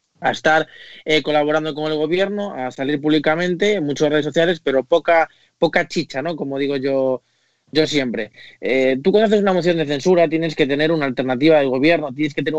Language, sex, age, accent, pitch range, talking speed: Spanish, male, 20-39, Spanish, 140-170 Hz, 200 wpm